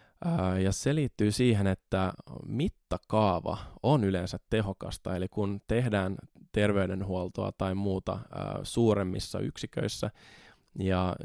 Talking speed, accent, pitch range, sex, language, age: 95 wpm, native, 95-115 Hz, male, Finnish, 20-39